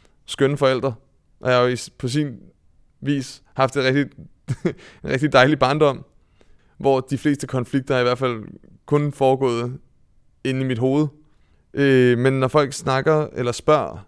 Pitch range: 120-145 Hz